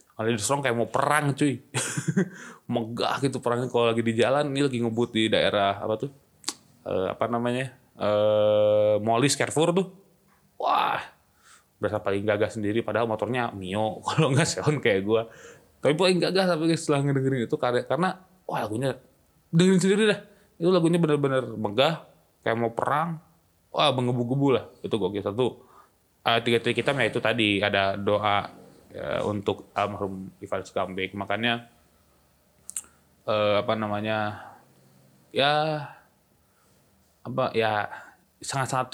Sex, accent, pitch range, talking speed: male, native, 100-140 Hz, 135 wpm